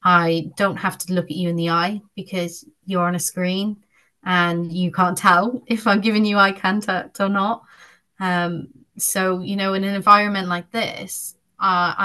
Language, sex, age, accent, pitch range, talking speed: English, female, 30-49, British, 170-200 Hz, 185 wpm